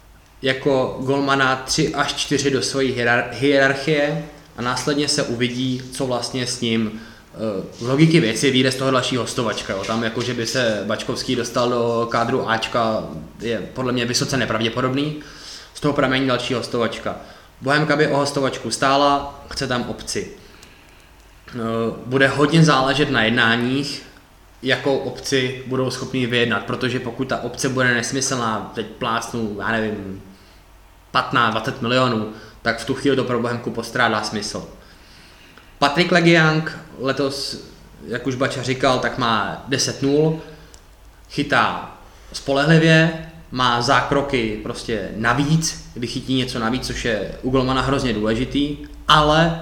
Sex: male